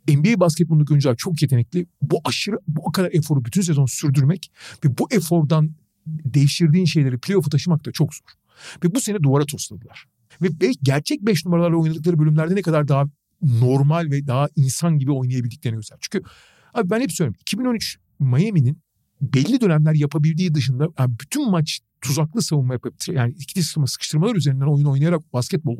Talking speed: 160 wpm